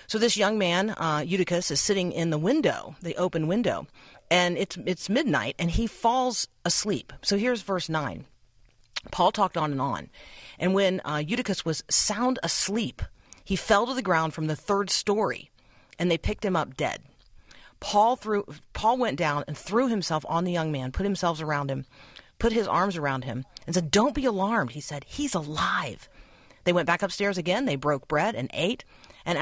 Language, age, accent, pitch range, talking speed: English, 40-59, American, 140-185 Hz, 190 wpm